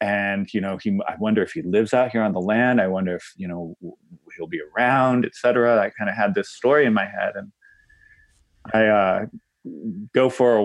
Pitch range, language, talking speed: 100-140 Hz, English, 220 wpm